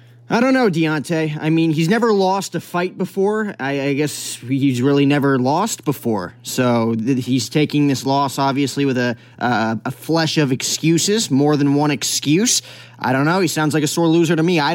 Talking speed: 195 wpm